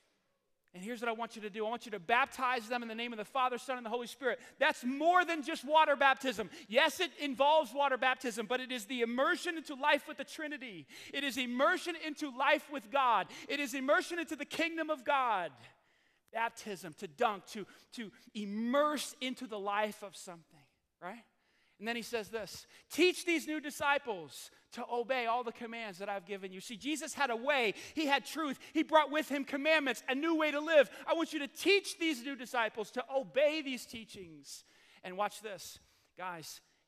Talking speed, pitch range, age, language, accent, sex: 205 wpm, 215-310 Hz, 30-49, English, American, male